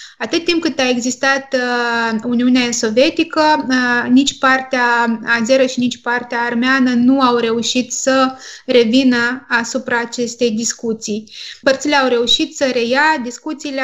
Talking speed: 120 wpm